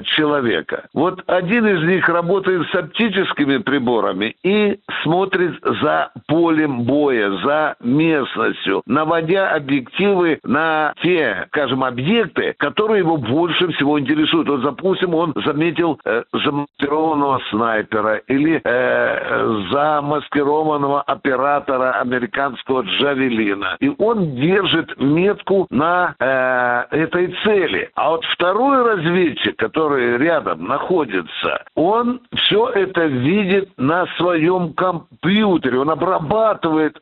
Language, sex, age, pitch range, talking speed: Russian, male, 60-79, 145-195 Hz, 105 wpm